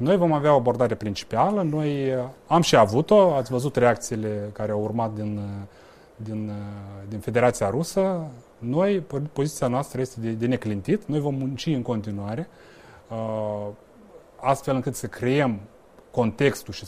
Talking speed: 135 wpm